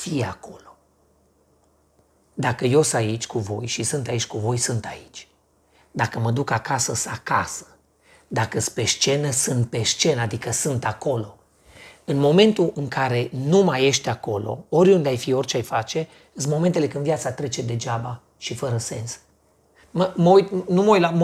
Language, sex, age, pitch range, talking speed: Romanian, male, 40-59, 120-165 Hz, 155 wpm